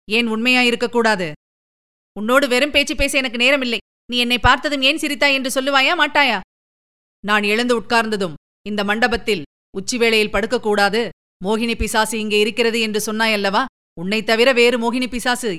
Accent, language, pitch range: native, Tamil, 200-250 Hz